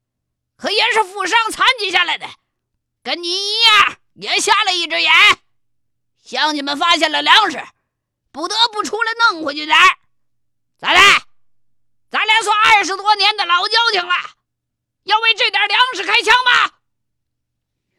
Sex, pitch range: female, 340-435 Hz